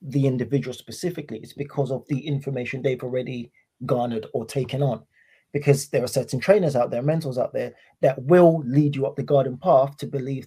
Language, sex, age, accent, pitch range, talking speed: English, male, 20-39, British, 135-160 Hz, 195 wpm